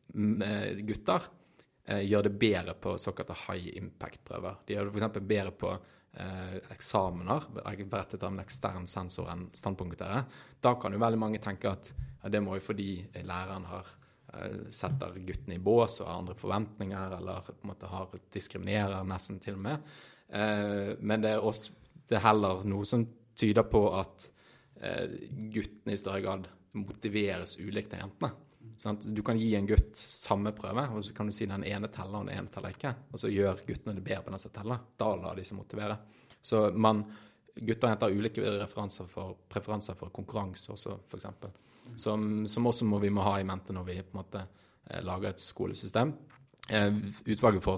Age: 30-49